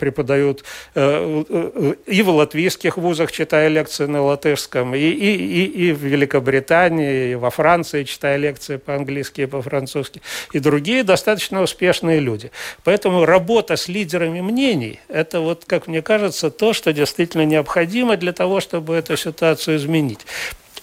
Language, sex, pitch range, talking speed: Russian, male, 150-195 Hz, 150 wpm